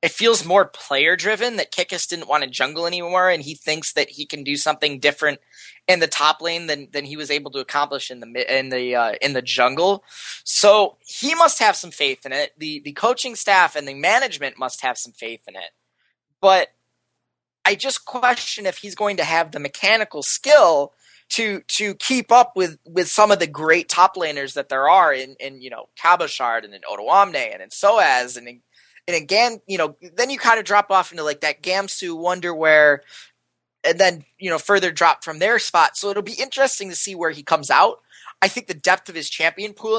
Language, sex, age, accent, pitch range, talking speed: English, male, 20-39, American, 150-210 Hz, 215 wpm